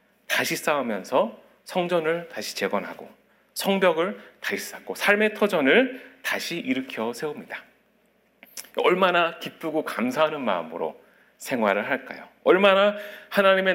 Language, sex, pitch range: Korean, male, 155-205 Hz